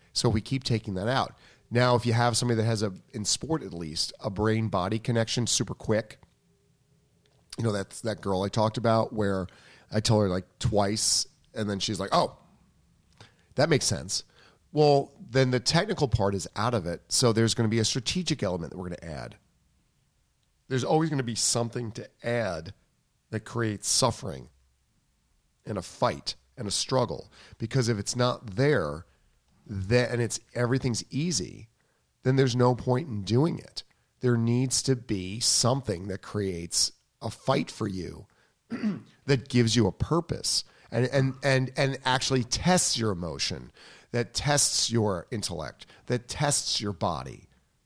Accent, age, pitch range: American, 40-59, 100-130 Hz